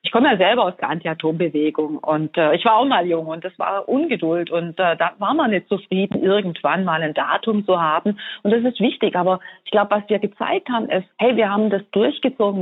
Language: German